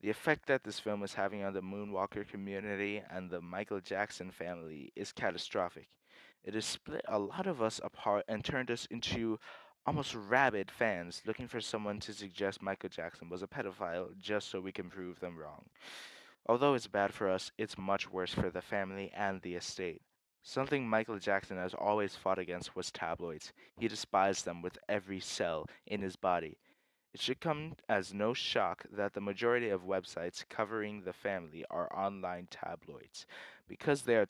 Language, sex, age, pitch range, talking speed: English, male, 20-39, 95-110 Hz, 180 wpm